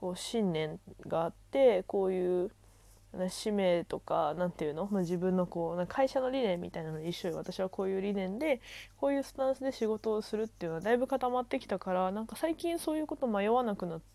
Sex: female